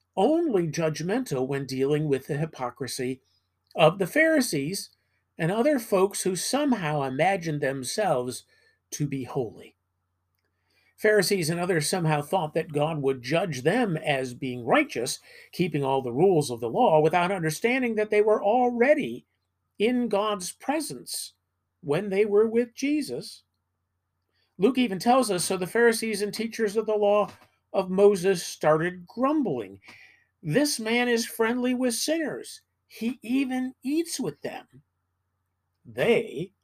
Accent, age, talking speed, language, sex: American, 50-69, 135 wpm, English, male